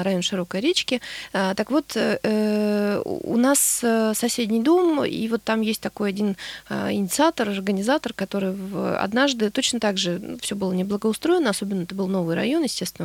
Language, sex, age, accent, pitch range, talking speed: Russian, female, 20-39, native, 190-260 Hz, 145 wpm